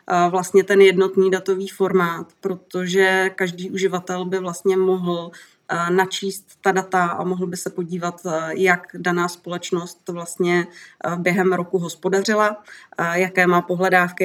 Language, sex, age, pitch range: Czech, female, 30-49, 175-190 Hz